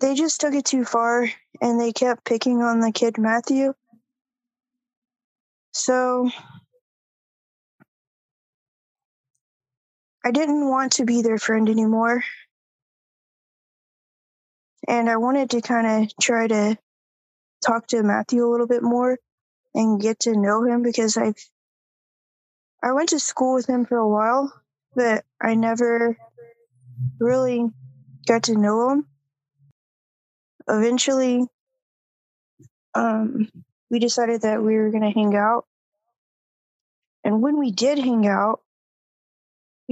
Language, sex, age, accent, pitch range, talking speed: English, female, 20-39, American, 220-250 Hz, 120 wpm